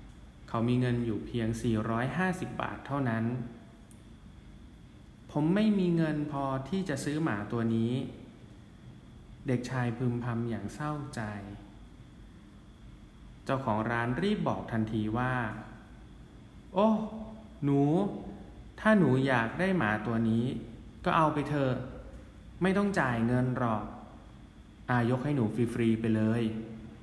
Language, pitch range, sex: English, 110-140 Hz, male